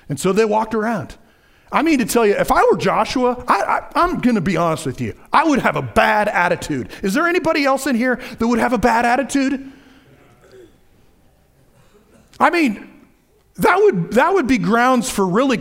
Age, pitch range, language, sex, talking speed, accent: 40-59, 200-290 Hz, English, male, 190 wpm, American